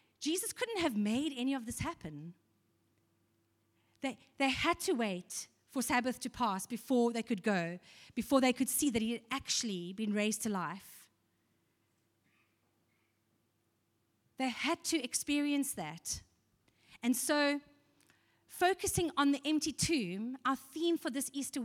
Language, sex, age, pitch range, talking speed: English, female, 30-49, 195-295 Hz, 140 wpm